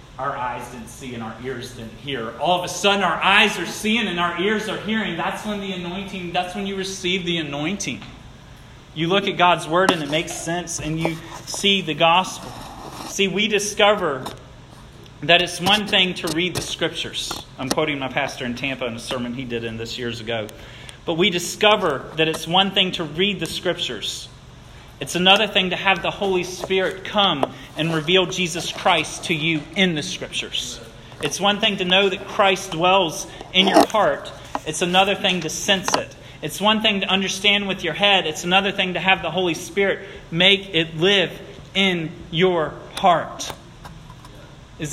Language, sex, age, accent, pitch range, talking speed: English, male, 30-49, American, 140-190 Hz, 190 wpm